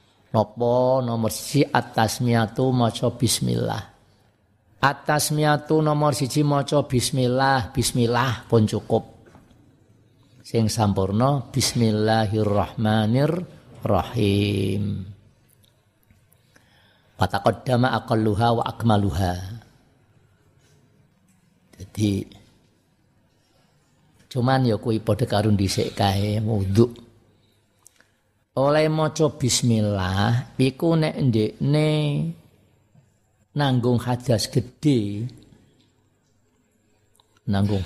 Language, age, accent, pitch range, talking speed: Indonesian, 50-69, native, 105-125 Hz, 65 wpm